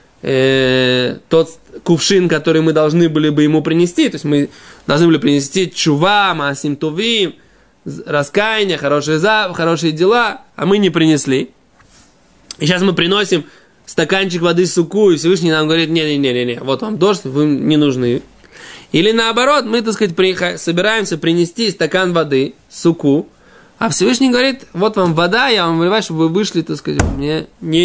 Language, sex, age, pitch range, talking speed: Russian, male, 20-39, 155-215 Hz, 160 wpm